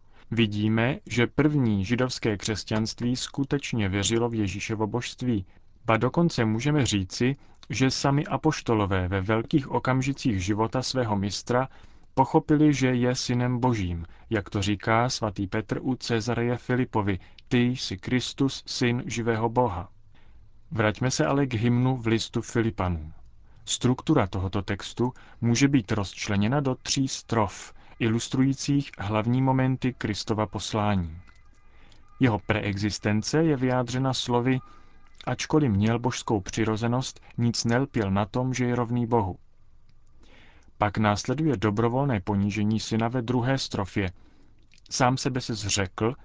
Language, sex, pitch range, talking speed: Czech, male, 105-125 Hz, 120 wpm